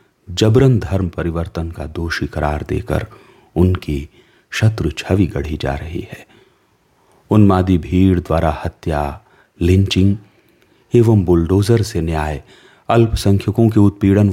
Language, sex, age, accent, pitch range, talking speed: Hindi, male, 40-59, native, 80-100 Hz, 115 wpm